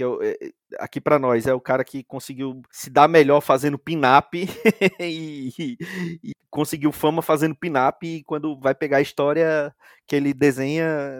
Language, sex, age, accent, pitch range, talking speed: Portuguese, male, 30-49, Brazilian, 135-175 Hz, 155 wpm